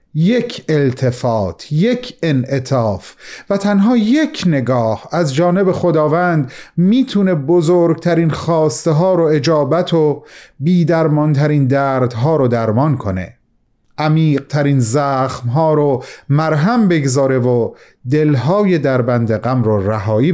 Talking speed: 115 wpm